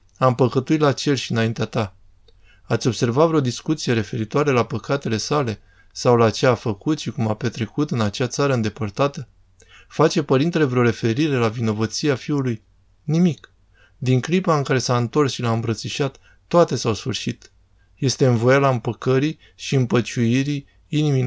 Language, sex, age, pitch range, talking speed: Romanian, male, 20-39, 115-140 Hz, 160 wpm